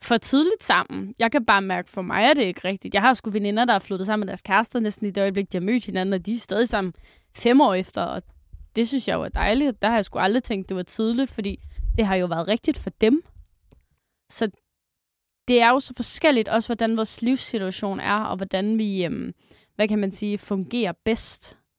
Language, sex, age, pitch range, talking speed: Danish, female, 20-39, 200-245 Hz, 230 wpm